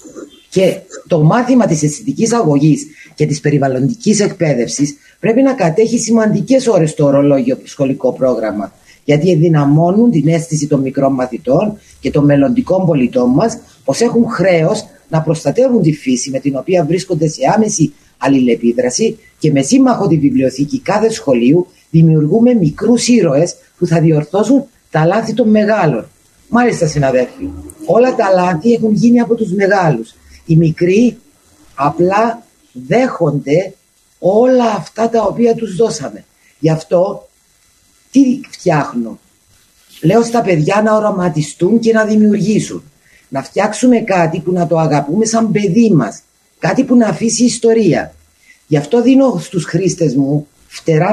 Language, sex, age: Greek, female, 30-49